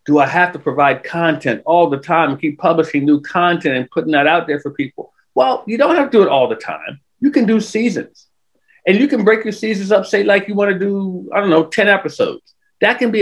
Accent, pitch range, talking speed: American, 150-205 Hz, 255 wpm